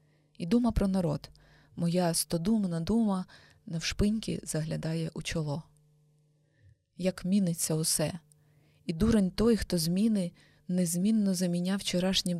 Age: 20-39